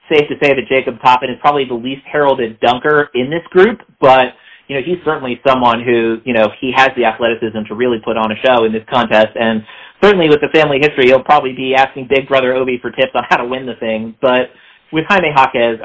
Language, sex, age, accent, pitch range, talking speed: English, male, 30-49, American, 115-140 Hz, 235 wpm